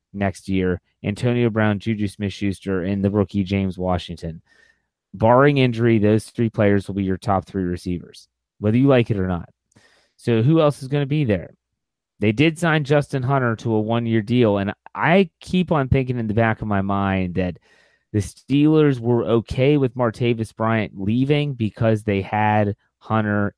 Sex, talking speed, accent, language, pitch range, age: male, 180 wpm, American, English, 100-140 Hz, 30-49